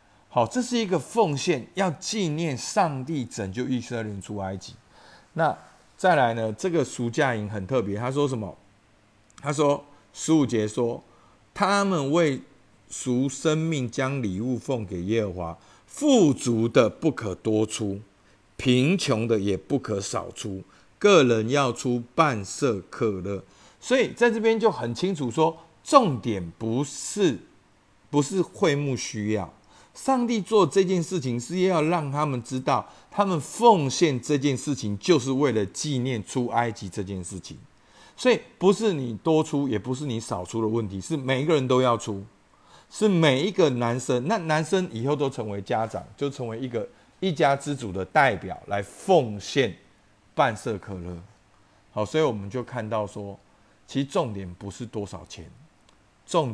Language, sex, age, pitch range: Chinese, male, 50-69, 105-150 Hz